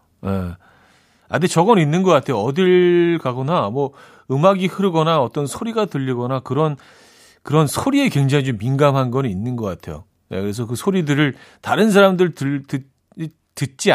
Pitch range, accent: 115-165 Hz, native